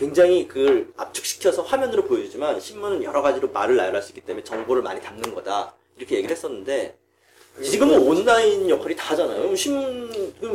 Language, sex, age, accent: Korean, male, 40-59, native